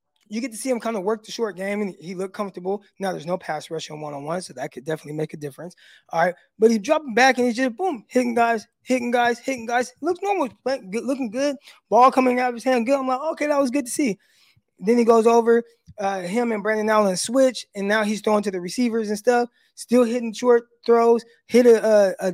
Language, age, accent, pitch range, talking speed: English, 20-39, American, 190-245 Hz, 245 wpm